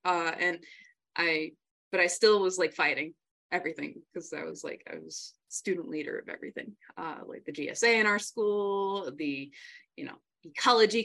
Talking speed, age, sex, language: 170 wpm, 20-39, female, English